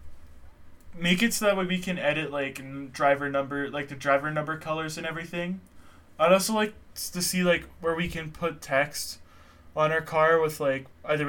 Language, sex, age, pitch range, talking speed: English, male, 20-39, 130-155 Hz, 185 wpm